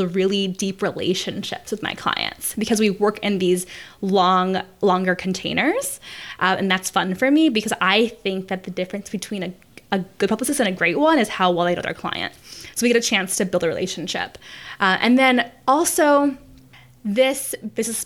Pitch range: 185-245 Hz